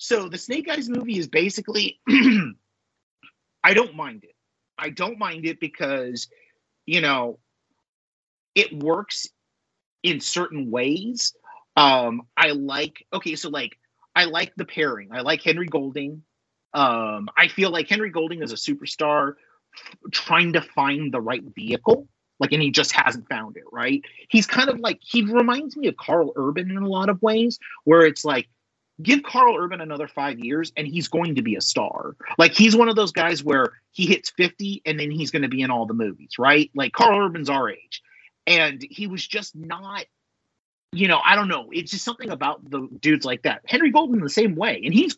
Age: 30-49